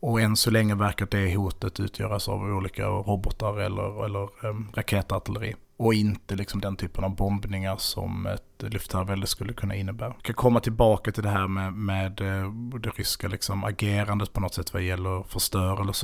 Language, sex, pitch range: Swedish, male, 95-110 Hz